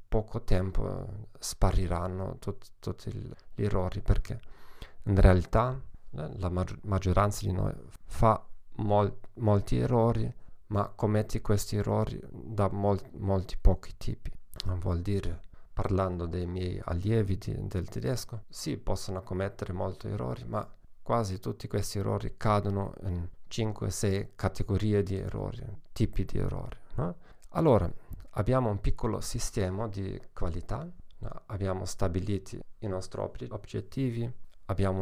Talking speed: 125 wpm